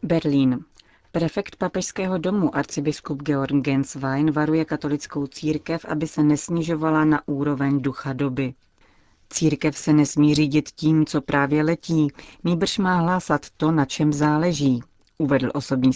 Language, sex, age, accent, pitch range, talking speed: Czech, female, 40-59, native, 135-155 Hz, 130 wpm